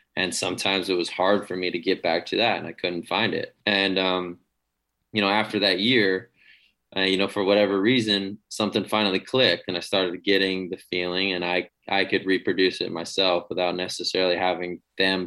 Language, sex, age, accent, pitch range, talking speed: English, male, 20-39, American, 90-100 Hz, 195 wpm